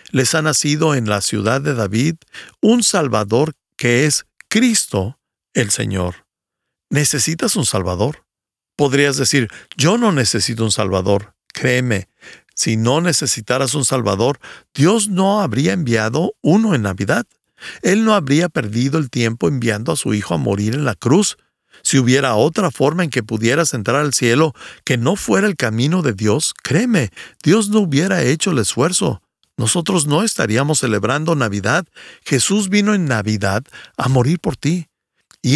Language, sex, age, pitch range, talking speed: Spanish, male, 60-79, 110-155 Hz, 155 wpm